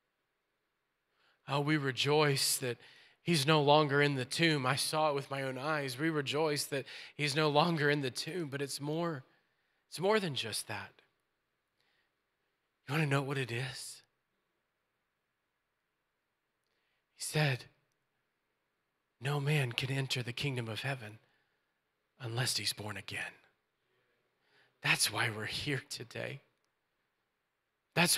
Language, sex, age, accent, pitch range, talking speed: English, male, 30-49, American, 130-165 Hz, 130 wpm